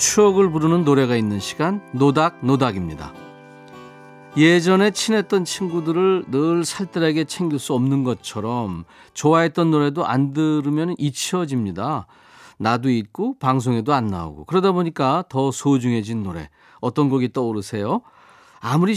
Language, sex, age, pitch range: Korean, male, 40-59, 115-160 Hz